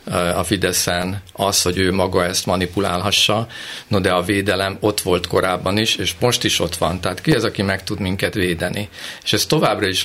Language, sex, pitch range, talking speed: Hungarian, male, 90-105 Hz, 195 wpm